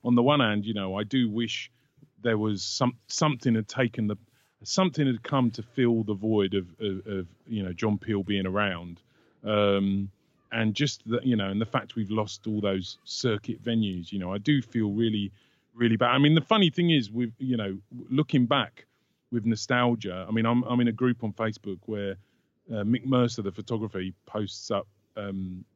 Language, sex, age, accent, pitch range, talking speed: English, male, 30-49, British, 100-125 Hz, 205 wpm